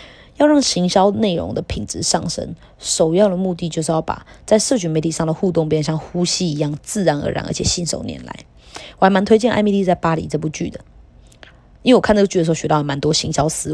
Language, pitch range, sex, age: Chinese, 160-190 Hz, female, 20-39